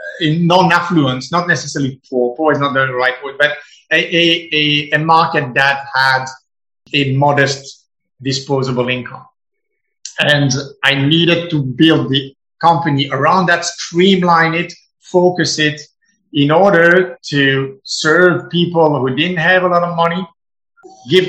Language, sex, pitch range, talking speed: English, male, 140-185 Hz, 130 wpm